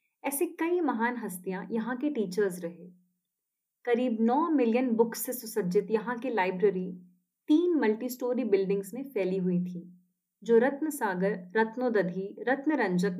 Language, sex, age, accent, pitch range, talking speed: Hindi, female, 30-49, native, 185-260 Hz, 135 wpm